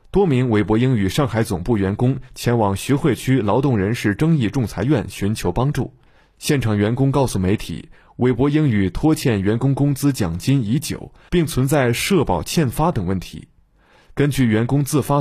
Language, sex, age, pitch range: Chinese, male, 20-39, 105-140 Hz